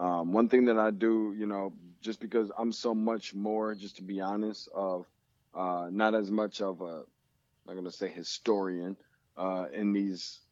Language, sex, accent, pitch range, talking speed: English, male, American, 100-115 Hz, 190 wpm